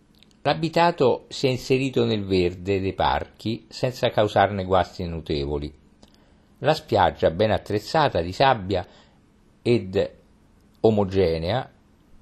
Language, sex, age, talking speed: Italian, male, 50-69, 100 wpm